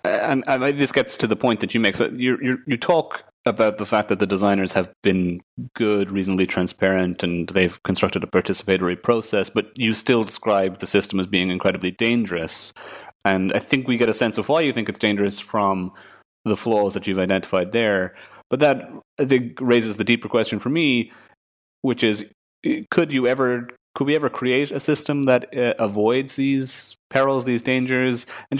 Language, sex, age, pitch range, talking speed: English, male, 30-49, 95-120 Hz, 190 wpm